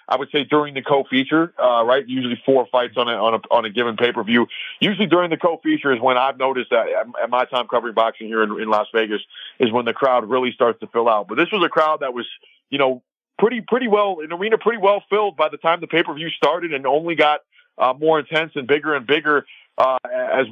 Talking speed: 240 wpm